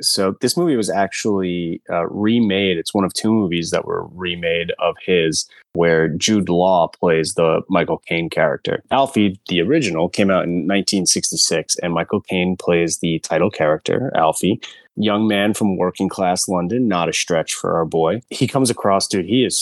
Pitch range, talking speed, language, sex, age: 90-110 Hz, 175 wpm, English, male, 20-39